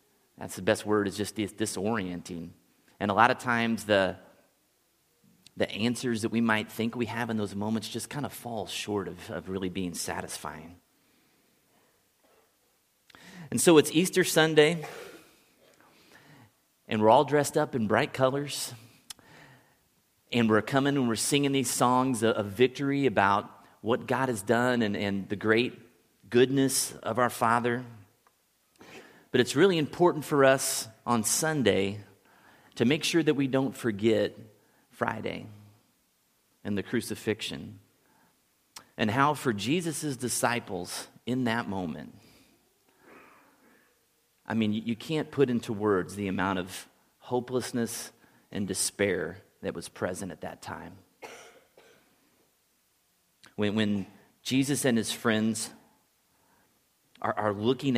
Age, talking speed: 30-49, 125 wpm